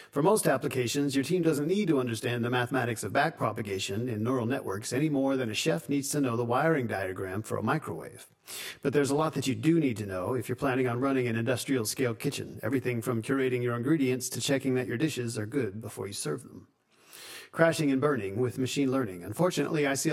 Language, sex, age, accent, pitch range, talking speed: English, male, 50-69, American, 120-145 Hz, 220 wpm